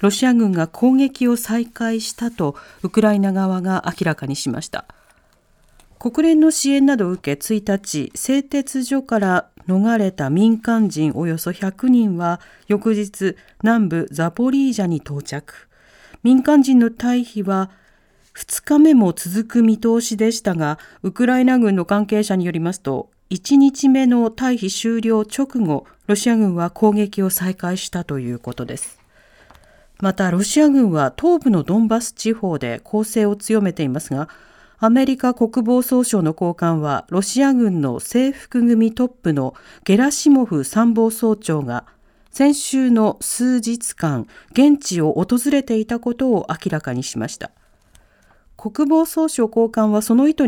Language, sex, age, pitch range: Japanese, female, 40-59, 180-245 Hz